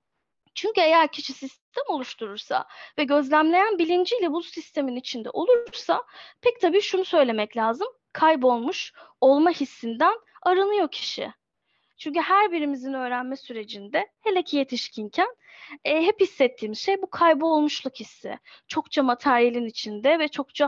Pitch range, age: 270-380 Hz, 10-29